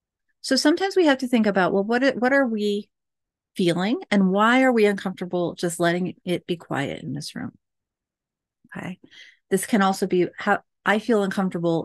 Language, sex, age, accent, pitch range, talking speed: English, female, 30-49, American, 170-225 Hz, 175 wpm